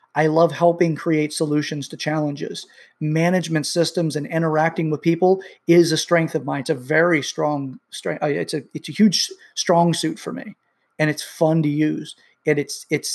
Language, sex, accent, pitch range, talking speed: English, male, American, 155-180 Hz, 185 wpm